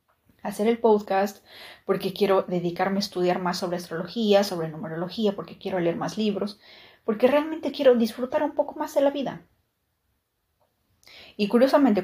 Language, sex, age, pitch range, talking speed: Spanish, female, 30-49, 175-210 Hz, 150 wpm